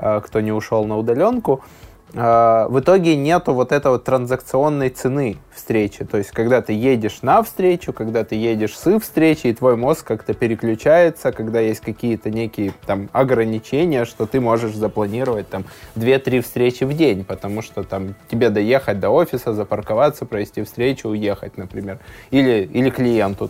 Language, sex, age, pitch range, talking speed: Russian, male, 20-39, 110-130 Hz, 145 wpm